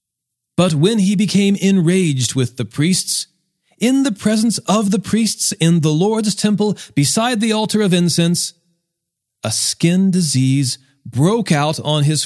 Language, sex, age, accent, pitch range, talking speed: English, male, 40-59, American, 135-185 Hz, 145 wpm